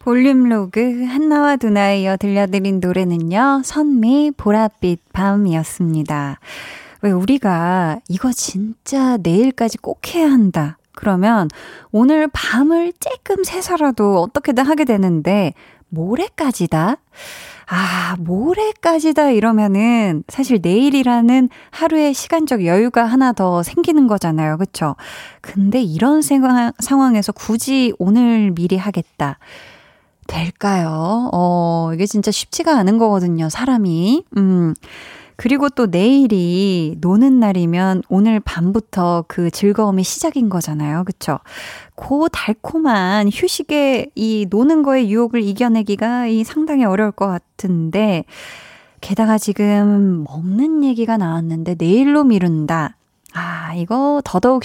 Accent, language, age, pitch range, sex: native, Korean, 20-39, 185-265 Hz, female